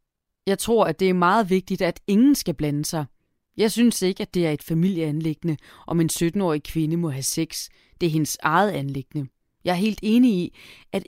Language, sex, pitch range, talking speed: Danish, female, 150-205 Hz, 205 wpm